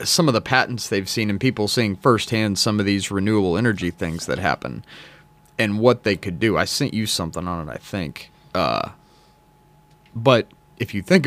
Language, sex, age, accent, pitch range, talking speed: English, male, 30-49, American, 100-125 Hz, 190 wpm